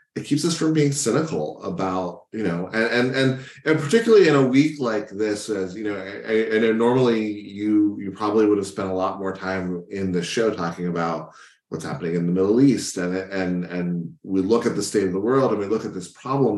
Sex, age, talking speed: male, 30-49, 225 wpm